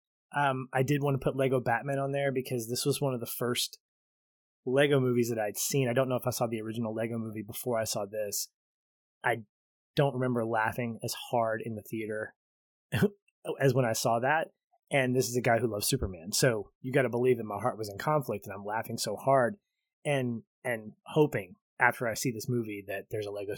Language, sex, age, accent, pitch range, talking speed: English, male, 20-39, American, 115-140 Hz, 220 wpm